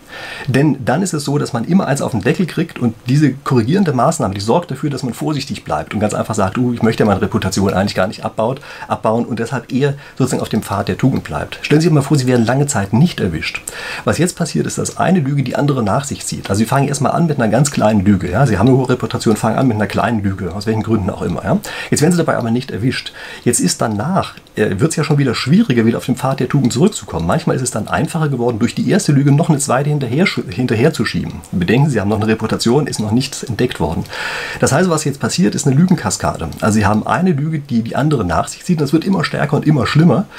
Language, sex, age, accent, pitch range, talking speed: German, male, 40-59, German, 115-155 Hz, 260 wpm